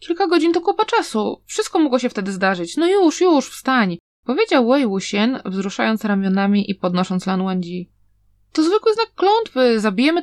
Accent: native